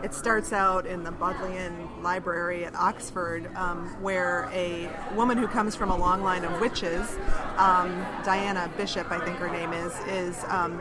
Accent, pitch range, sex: American, 175-210 Hz, female